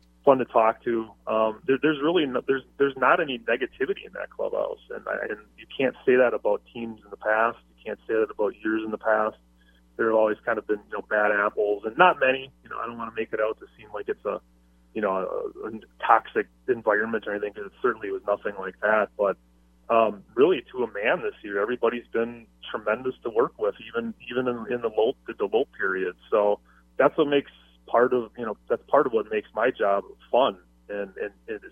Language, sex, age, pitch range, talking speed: English, male, 30-49, 100-130 Hz, 230 wpm